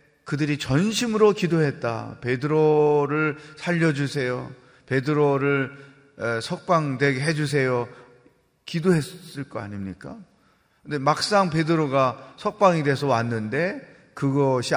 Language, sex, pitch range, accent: Korean, male, 125-155 Hz, native